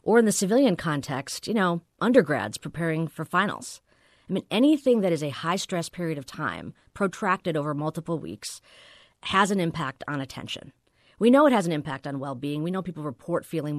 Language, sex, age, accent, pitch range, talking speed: English, female, 40-59, American, 155-210 Hz, 185 wpm